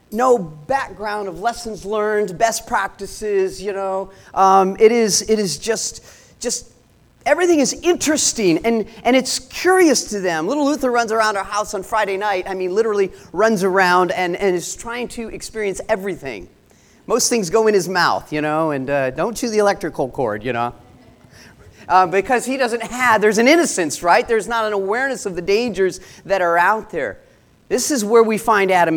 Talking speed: 185 wpm